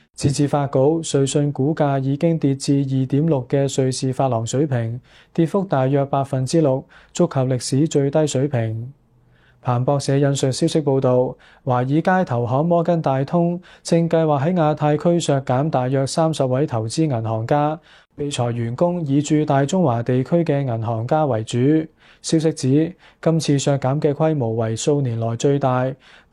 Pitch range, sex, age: 130-160 Hz, male, 20-39